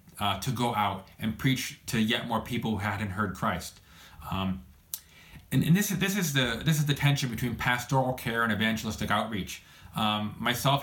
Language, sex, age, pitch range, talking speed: English, male, 30-49, 105-135 Hz, 190 wpm